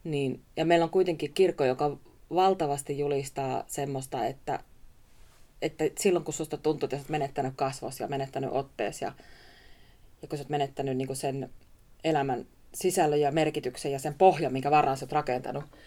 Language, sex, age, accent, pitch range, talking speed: Finnish, female, 30-49, native, 135-170 Hz, 160 wpm